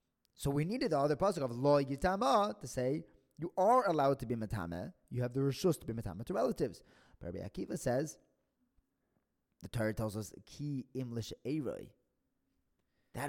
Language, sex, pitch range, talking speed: English, male, 100-135 Hz, 165 wpm